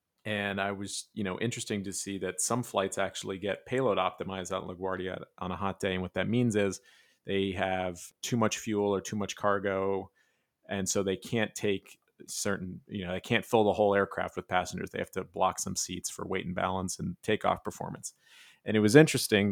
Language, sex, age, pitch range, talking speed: English, male, 30-49, 95-105 Hz, 210 wpm